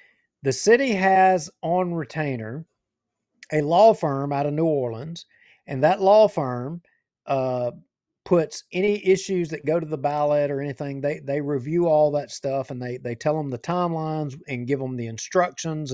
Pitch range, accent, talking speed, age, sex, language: 140-180 Hz, American, 170 wpm, 50-69, male, English